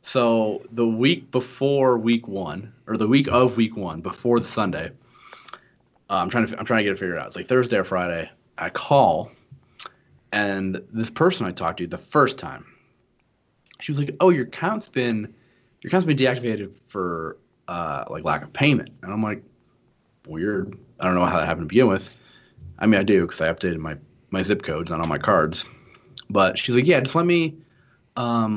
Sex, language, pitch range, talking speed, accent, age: male, English, 95-135 Hz, 195 wpm, American, 30-49